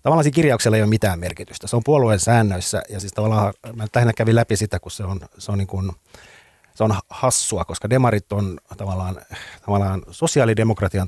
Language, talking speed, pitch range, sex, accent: Finnish, 180 wpm, 85-110 Hz, male, native